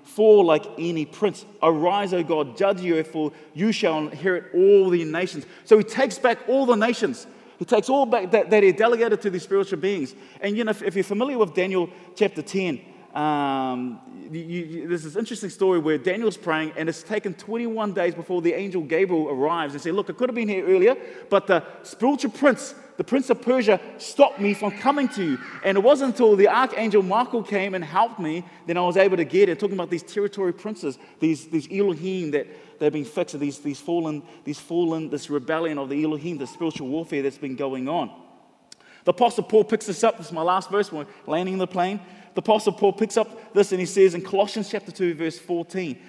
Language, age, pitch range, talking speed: English, 20-39, 170-215 Hz, 215 wpm